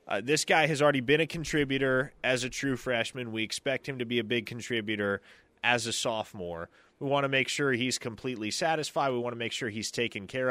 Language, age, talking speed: English, 20-39, 225 wpm